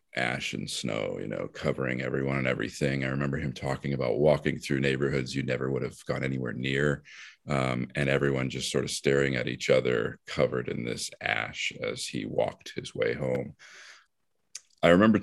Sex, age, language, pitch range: male, 40-59, English, 65-75 Hz